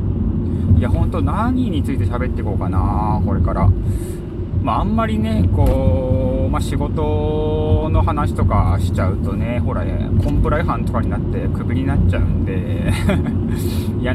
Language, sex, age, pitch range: Japanese, male, 20-39, 85-105 Hz